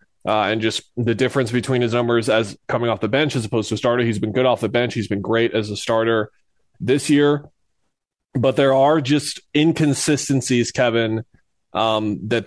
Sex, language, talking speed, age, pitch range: male, English, 190 wpm, 20-39, 110-130 Hz